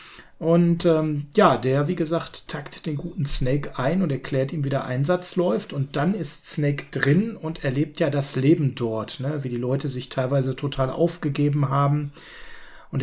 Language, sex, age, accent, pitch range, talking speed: German, male, 40-59, German, 145-180 Hz, 180 wpm